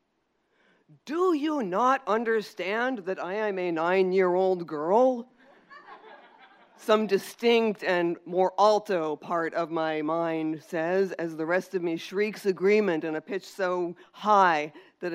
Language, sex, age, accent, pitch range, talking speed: English, female, 50-69, American, 170-205 Hz, 130 wpm